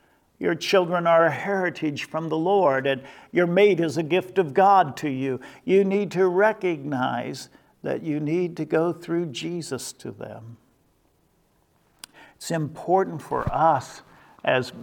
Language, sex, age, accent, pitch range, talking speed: English, male, 50-69, American, 135-180 Hz, 145 wpm